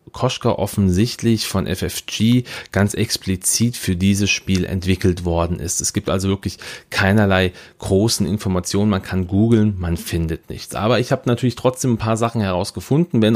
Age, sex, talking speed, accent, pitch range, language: 40-59, male, 155 wpm, German, 90-110 Hz, German